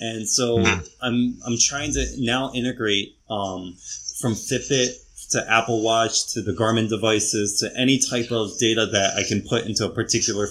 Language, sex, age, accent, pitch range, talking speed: English, male, 20-39, American, 105-115 Hz, 170 wpm